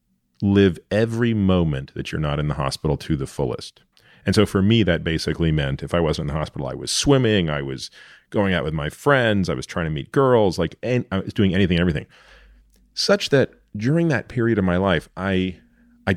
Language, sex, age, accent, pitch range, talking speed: English, male, 40-59, American, 80-100 Hz, 220 wpm